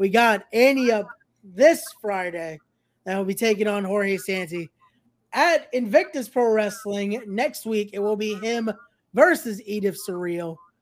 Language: English